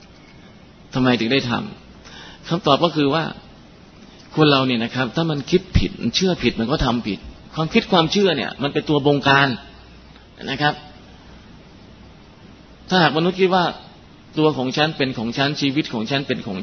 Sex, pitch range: male, 115-145 Hz